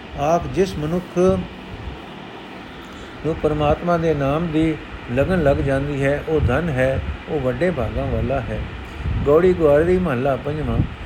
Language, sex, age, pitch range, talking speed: Punjabi, male, 60-79, 120-160 Hz, 130 wpm